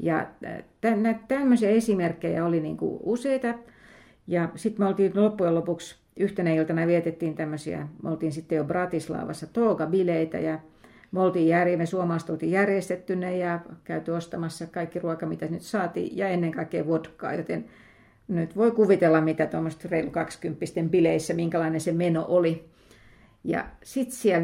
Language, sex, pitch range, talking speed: Finnish, female, 165-220 Hz, 135 wpm